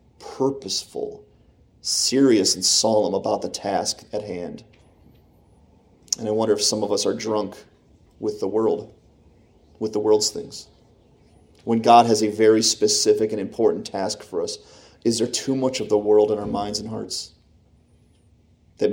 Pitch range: 105-115 Hz